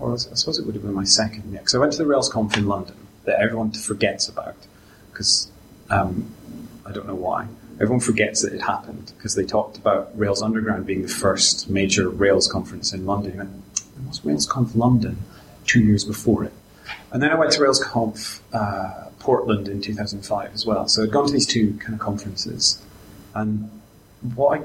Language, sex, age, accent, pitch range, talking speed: English, male, 30-49, British, 100-115 Hz, 195 wpm